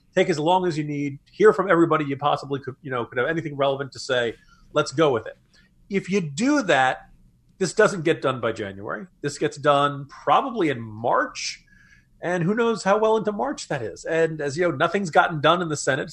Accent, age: American, 40-59